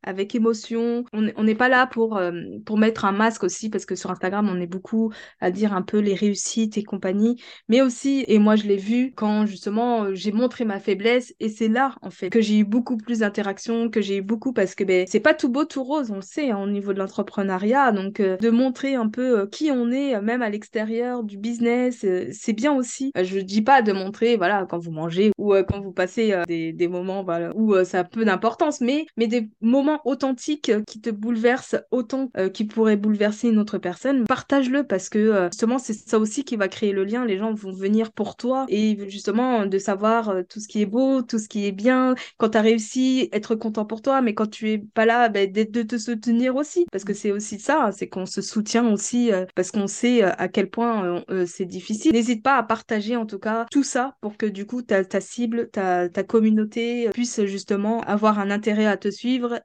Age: 20-39